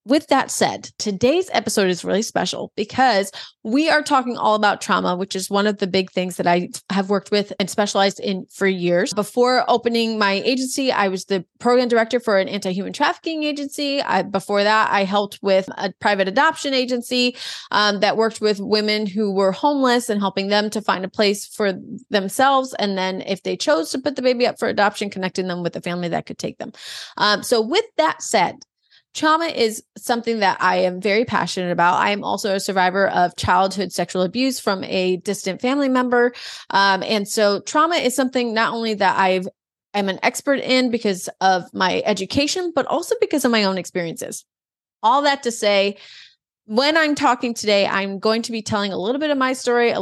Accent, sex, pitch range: American, female, 195-250 Hz